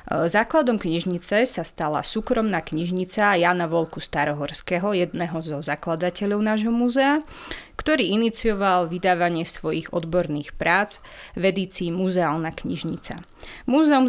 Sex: female